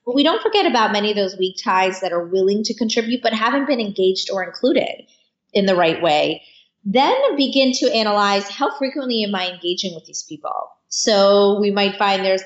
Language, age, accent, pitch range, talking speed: English, 20-39, American, 185-225 Hz, 200 wpm